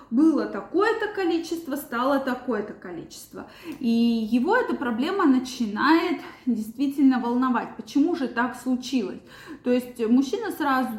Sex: female